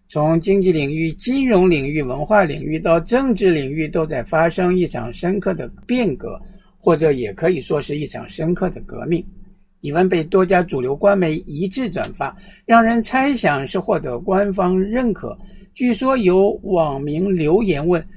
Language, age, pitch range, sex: Chinese, 60-79, 165-210 Hz, male